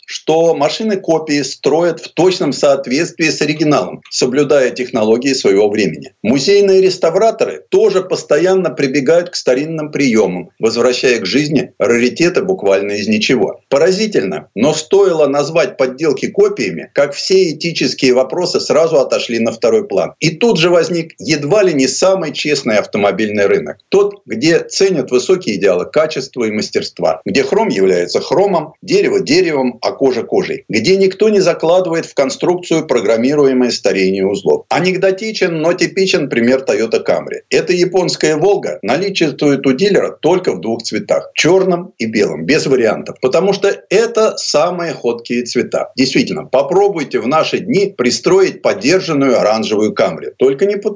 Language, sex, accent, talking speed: Russian, male, native, 140 wpm